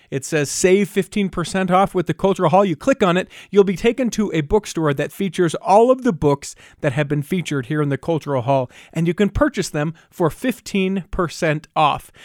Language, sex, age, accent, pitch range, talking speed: English, male, 40-59, American, 150-205 Hz, 205 wpm